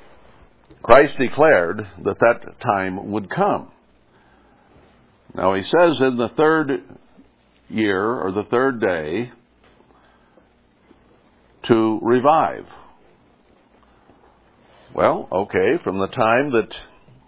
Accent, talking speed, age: American, 90 wpm, 60-79